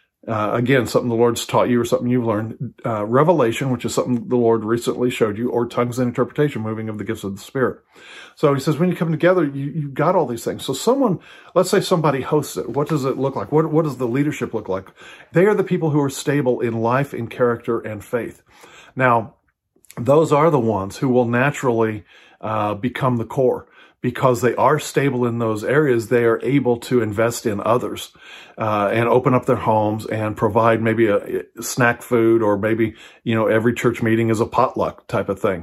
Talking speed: 215 wpm